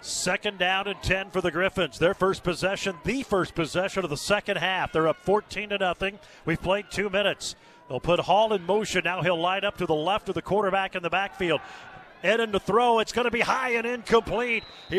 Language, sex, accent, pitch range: English, male, American, 190-240 Hz